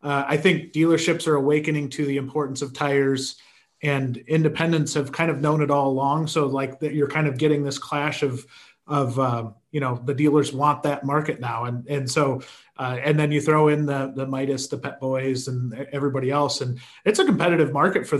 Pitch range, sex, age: 140-165 Hz, male, 30-49